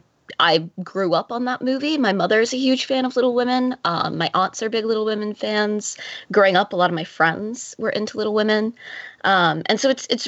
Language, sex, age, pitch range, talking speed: English, female, 20-39, 170-220 Hz, 230 wpm